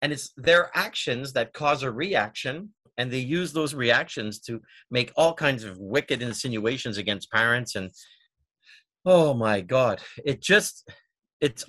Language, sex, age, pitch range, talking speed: English, male, 50-69, 120-160 Hz, 150 wpm